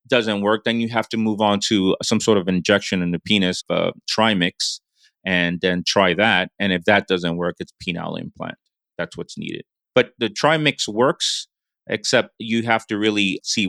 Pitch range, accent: 95-120 Hz, American